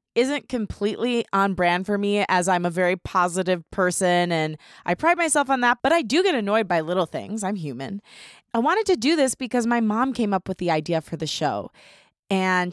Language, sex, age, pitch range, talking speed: English, female, 20-39, 165-215 Hz, 210 wpm